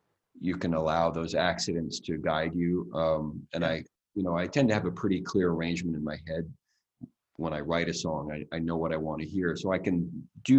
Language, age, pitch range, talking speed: English, 30-49, 80-95 Hz, 230 wpm